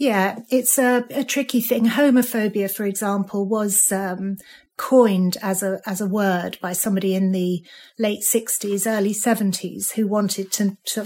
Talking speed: 155 wpm